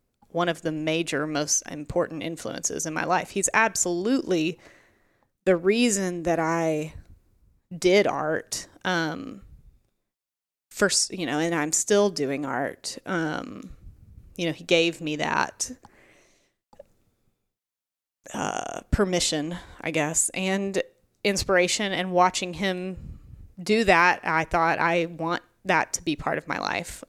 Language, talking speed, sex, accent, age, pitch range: English, 125 wpm, female, American, 30-49, 160-195 Hz